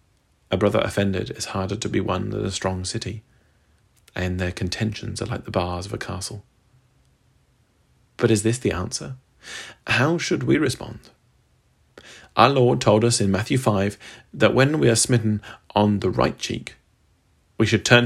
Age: 40-59